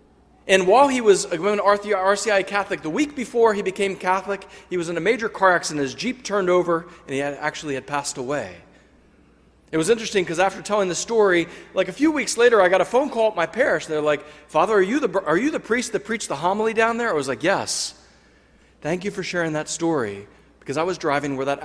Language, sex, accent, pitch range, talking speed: English, male, American, 145-225 Hz, 240 wpm